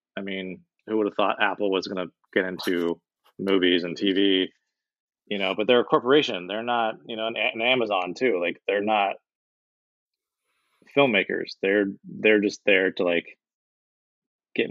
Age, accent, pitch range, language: 20-39, American, 95-115 Hz, English